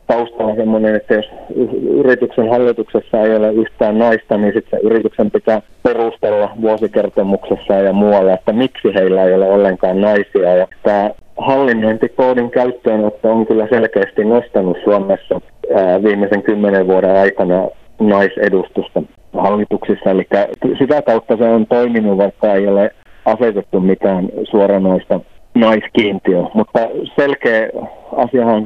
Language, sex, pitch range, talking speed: Finnish, male, 100-115 Hz, 115 wpm